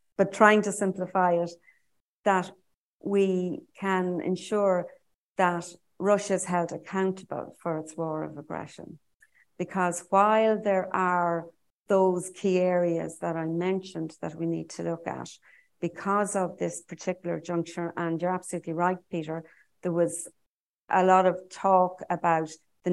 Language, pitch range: English, 165-185 Hz